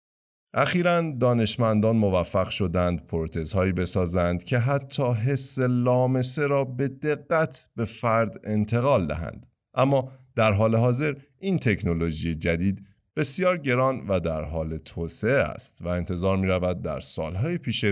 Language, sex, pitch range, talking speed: Persian, male, 85-130 Hz, 125 wpm